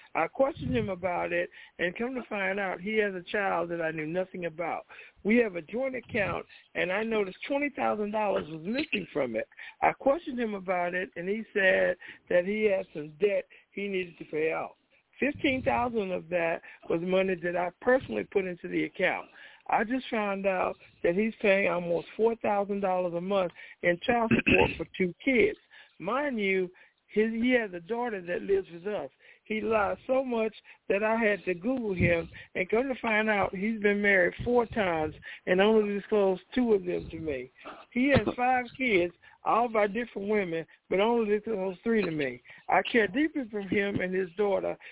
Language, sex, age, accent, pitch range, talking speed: English, male, 60-79, American, 185-235 Hz, 185 wpm